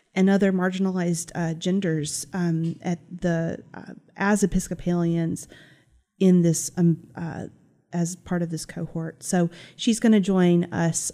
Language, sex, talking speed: English, female, 140 wpm